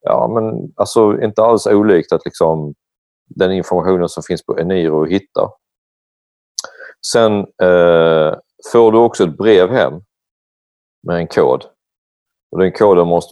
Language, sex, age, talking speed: Swedish, male, 40-59, 135 wpm